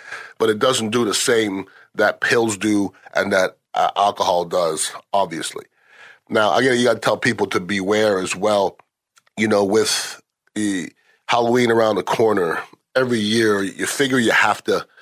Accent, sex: American, male